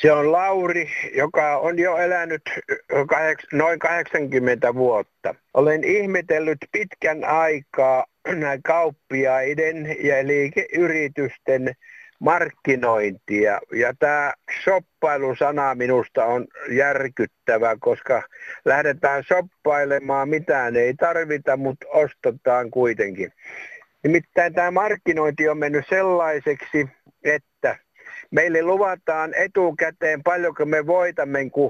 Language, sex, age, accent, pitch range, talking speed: Finnish, male, 60-79, native, 140-175 Hz, 85 wpm